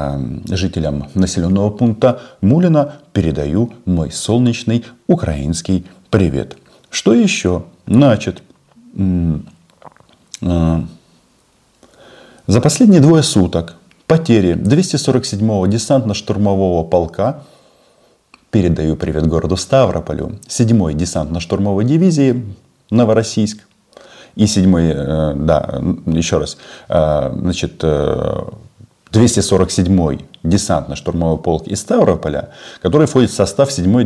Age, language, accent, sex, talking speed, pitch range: 30-49, Russian, native, male, 85 wpm, 80-115 Hz